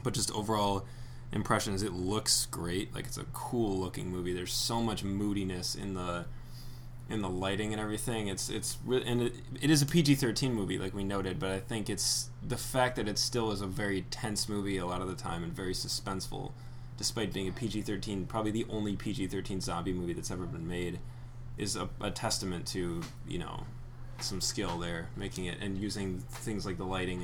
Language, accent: English, American